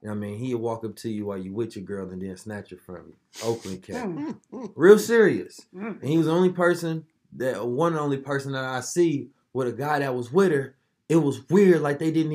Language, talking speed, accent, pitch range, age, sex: English, 235 wpm, American, 130-165 Hz, 20-39, male